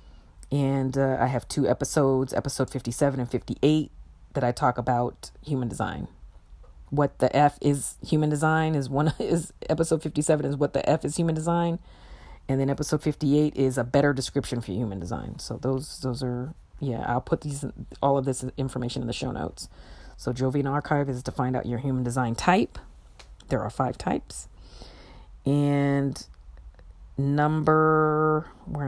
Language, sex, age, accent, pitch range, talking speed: English, female, 40-59, American, 120-150 Hz, 165 wpm